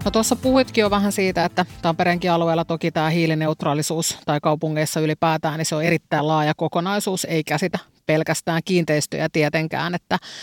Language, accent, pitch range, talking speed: Finnish, native, 155-175 Hz, 155 wpm